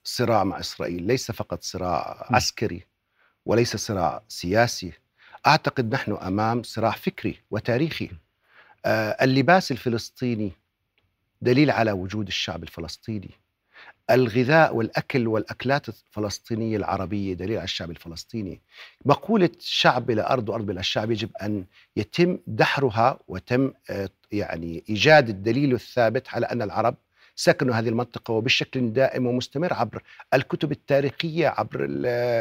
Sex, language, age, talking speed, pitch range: male, Arabic, 50-69, 115 wpm, 105-140 Hz